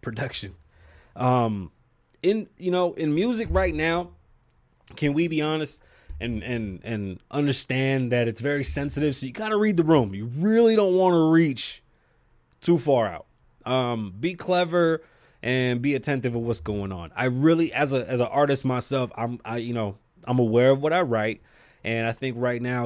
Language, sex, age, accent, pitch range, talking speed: English, male, 20-39, American, 115-150 Hz, 185 wpm